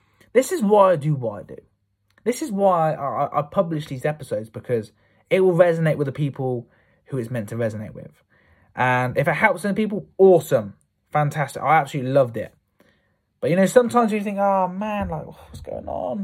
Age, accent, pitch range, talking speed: 20-39, British, 130-200 Hz, 200 wpm